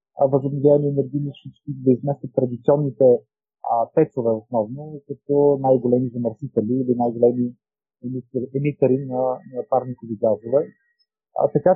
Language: Bulgarian